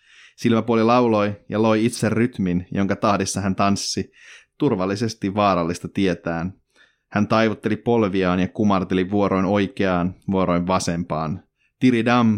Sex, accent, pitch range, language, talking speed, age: male, native, 90-110 Hz, Finnish, 110 wpm, 30-49